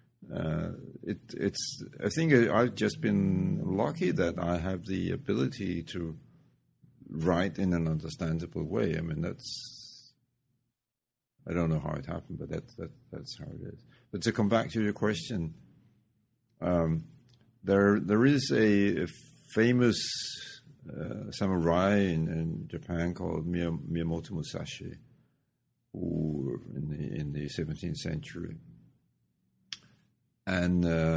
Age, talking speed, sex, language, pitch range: 50-69, 125 wpm, male, English, 80-115 Hz